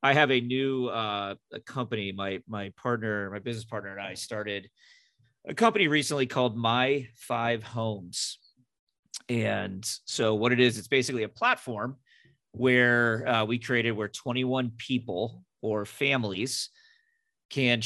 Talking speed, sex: 140 wpm, male